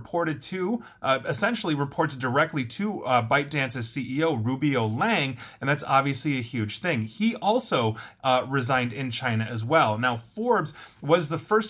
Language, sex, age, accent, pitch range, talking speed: English, male, 30-49, American, 130-180 Hz, 160 wpm